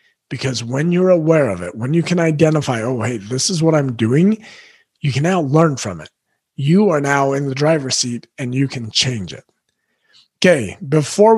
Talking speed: 195 wpm